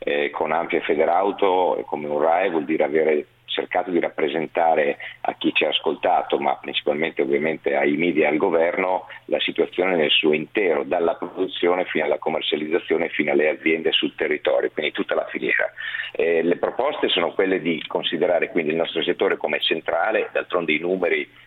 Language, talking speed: Italian, 175 wpm